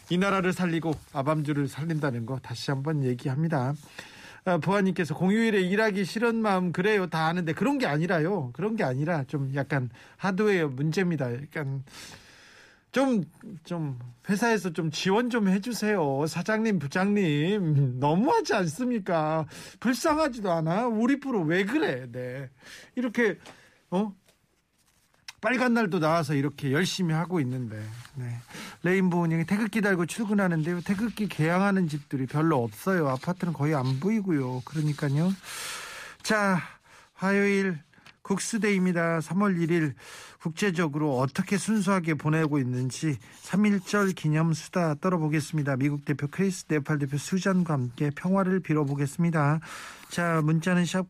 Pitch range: 145-195 Hz